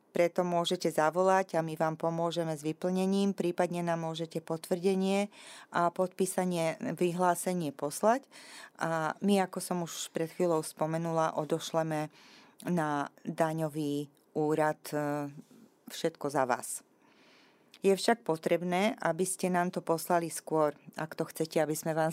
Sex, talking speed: female, 125 wpm